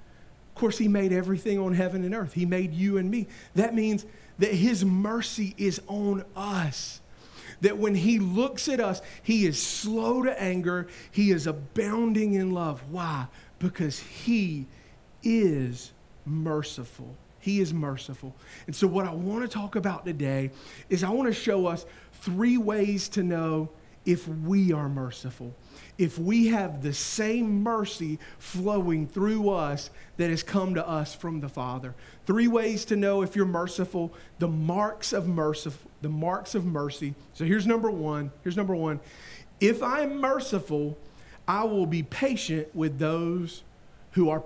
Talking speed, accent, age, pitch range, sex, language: 160 wpm, American, 40-59, 155-210 Hz, male, English